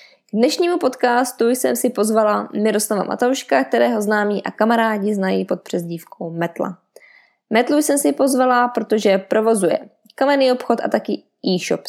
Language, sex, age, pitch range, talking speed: Czech, female, 20-39, 195-255 Hz, 130 wpm